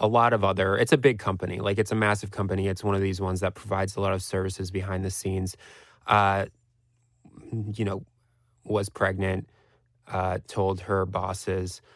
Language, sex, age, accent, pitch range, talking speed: English, male, 20-39, American, 95-110 Hz, 180 wpm